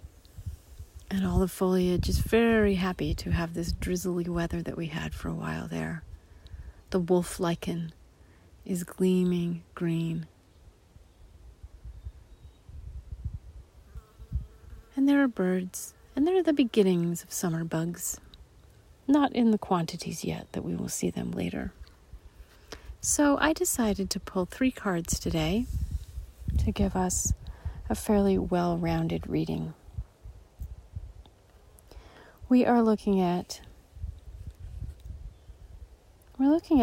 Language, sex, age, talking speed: English, female, 40-59, 110 wpm